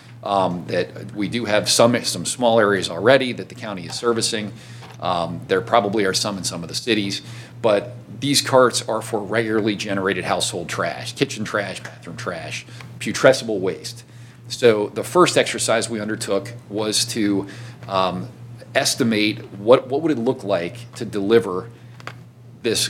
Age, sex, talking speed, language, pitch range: 40-59, male, 155 wpm, English, 105-125 Hz